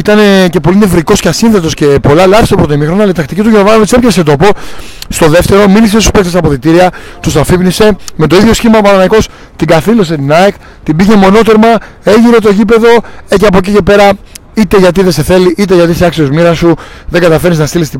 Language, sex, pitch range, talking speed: Greek, male, 145-195 Hz, 220 wpm